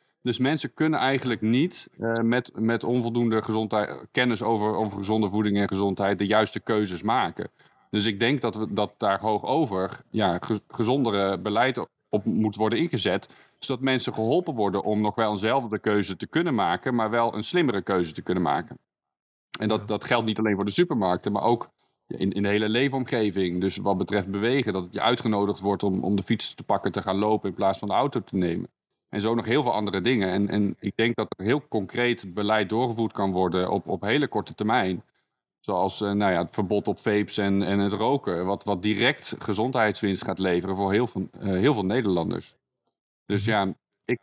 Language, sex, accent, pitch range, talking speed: Dutch, male, Dutch, 100-115 Hz, 195 wpm